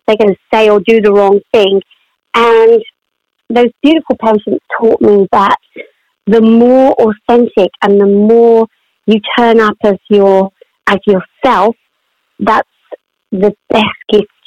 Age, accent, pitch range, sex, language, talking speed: 40-59, British, 210-265 Hz, female, English, 135 wpm